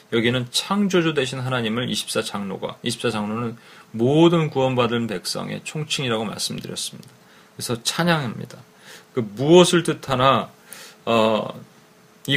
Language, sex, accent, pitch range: Korean, male, native, 115-150 Hz